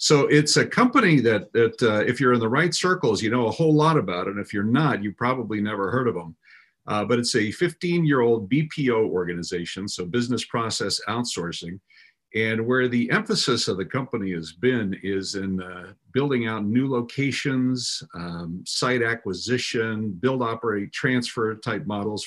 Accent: American